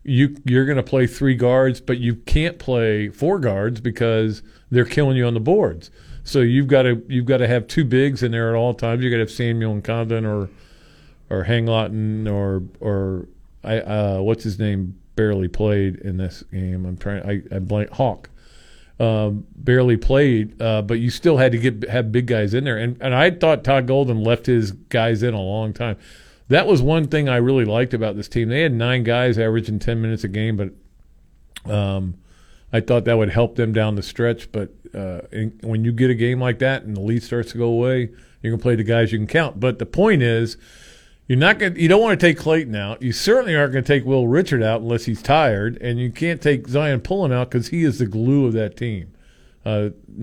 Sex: male